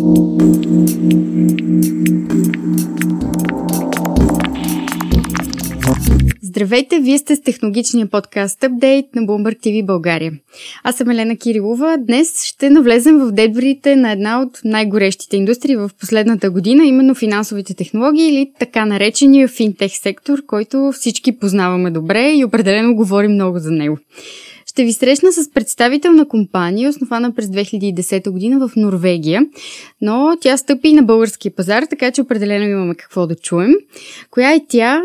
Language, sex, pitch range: Bulgarian, female, 195-275 Hz